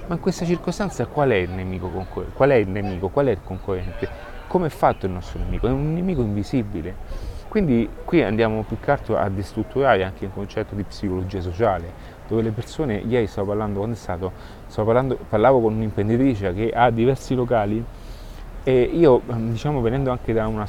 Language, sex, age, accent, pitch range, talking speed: Italian, male, 30-49, native, 95-115 Hz, 185 wpm